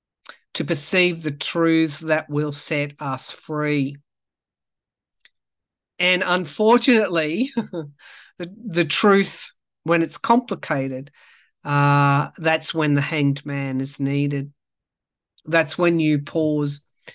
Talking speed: 100 wpm